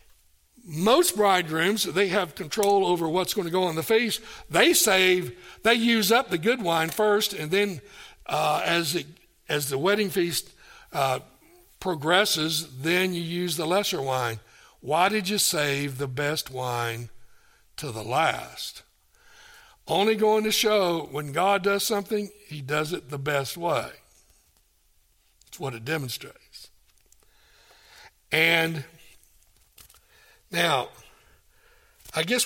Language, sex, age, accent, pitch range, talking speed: English, male, 60-79, American, 130-200 Hz, 130 wpm